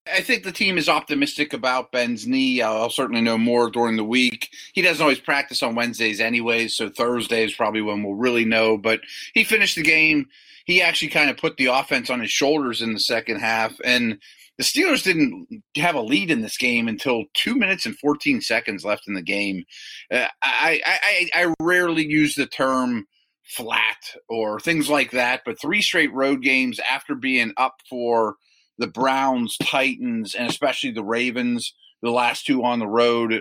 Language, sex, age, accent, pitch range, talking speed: English, male, 30-49, American, 115-165 Hz, 185 wpm